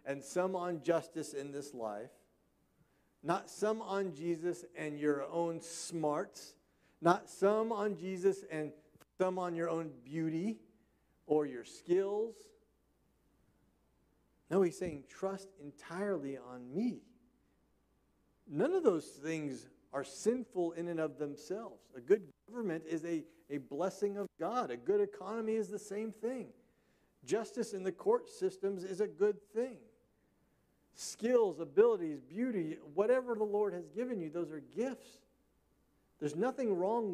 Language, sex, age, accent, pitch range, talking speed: English, male, 50-69, American, 155-230 Hz, 135 wpm